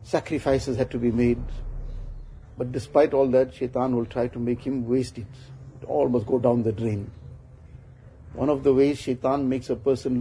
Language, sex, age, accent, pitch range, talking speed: English, male, 50-69, Indian, 120-140 Hz, 190 wpm